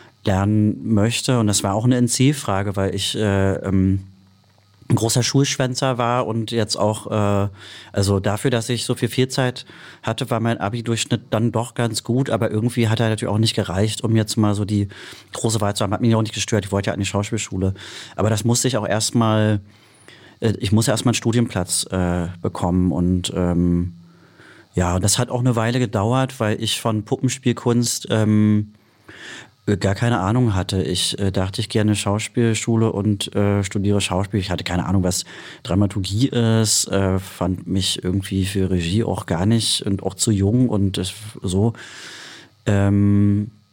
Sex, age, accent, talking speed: male, 30-49, German, 180 wpm